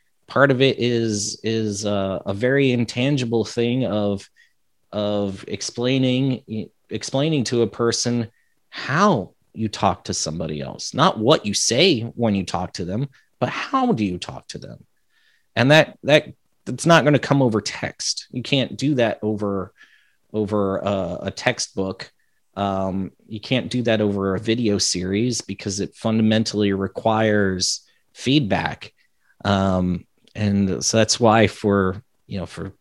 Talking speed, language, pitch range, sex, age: 150 wpm, English, 100-115 Hz, male, 30-49